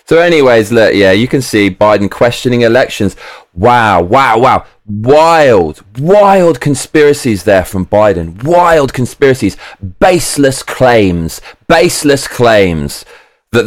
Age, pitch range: 20-39, 115-170 Hz